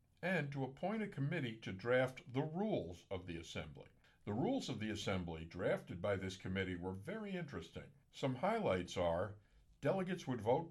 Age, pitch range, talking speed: 60-79, 100-150 Hz, 170 wpm